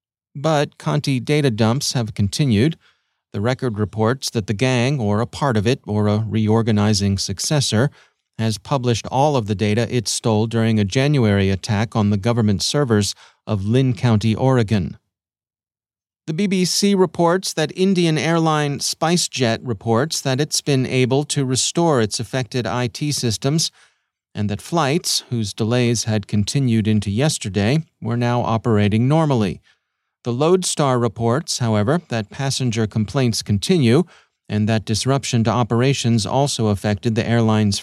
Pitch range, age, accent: 110-140 Hz, 40-59, American